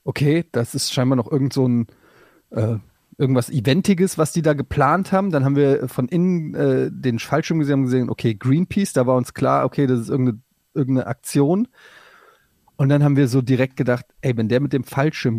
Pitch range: 125-160 Hz